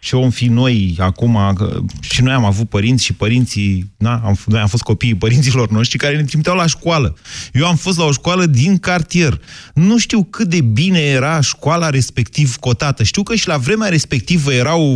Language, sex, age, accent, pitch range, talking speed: Romanian, male, 30-49, native, 115-175 Hz, 200 wpm